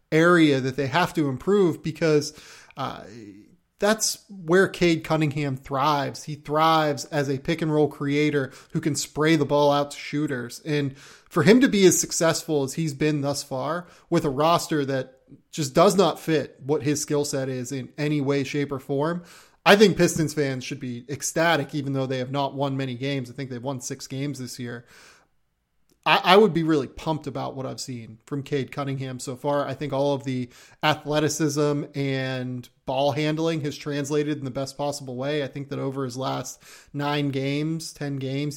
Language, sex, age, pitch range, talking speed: English, male, 30-49, 135-155 Hz, 190 wpm